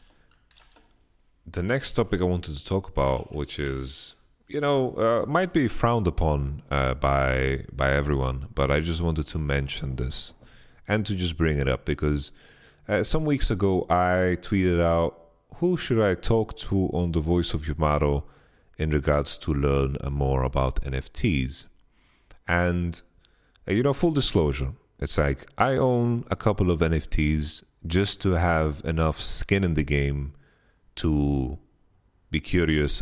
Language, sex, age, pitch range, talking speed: English, male, 30-49, 70-90 Hz, 155 wpm